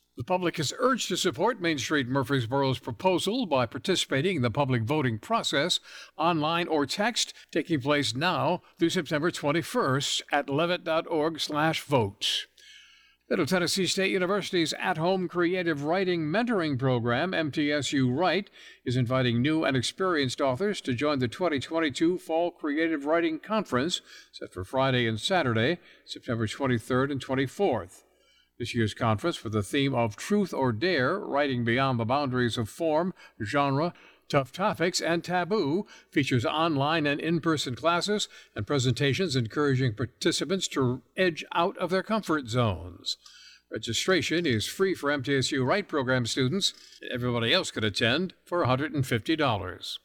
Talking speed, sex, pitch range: 135 wpm, male, 125-175 Hz